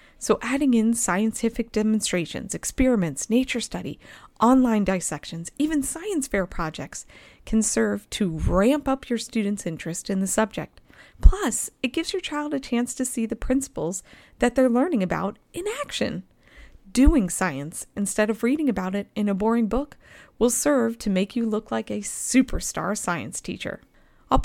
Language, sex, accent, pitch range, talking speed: English, female, American, 190-255 Hz, 160 wpm